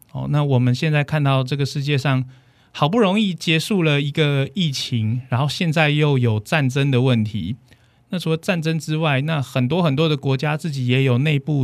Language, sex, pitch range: Korean, male, 120-155 Hz